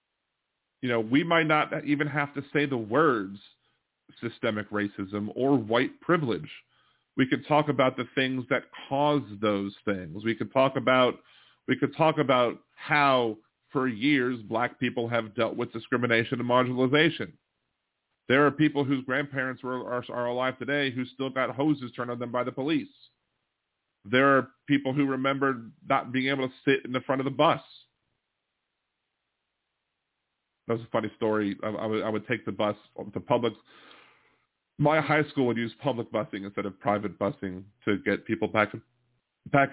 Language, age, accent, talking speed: English, 40-59, American, 170 wpm